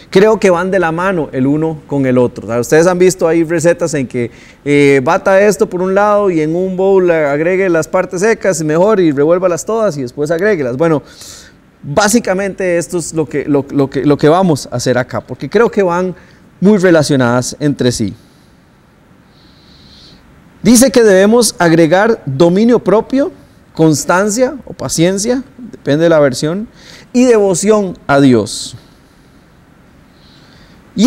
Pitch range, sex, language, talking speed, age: 140-200 Hz, male, Spanish, 160 wpm, 30-49